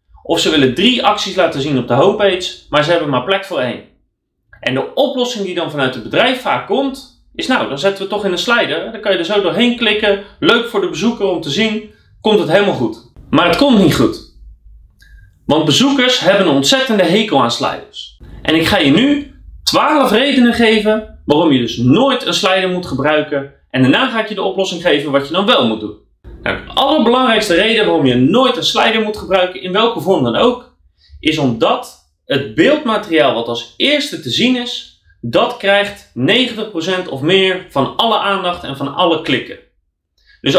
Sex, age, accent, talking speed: male, 30-49, Dutch, 200 wpm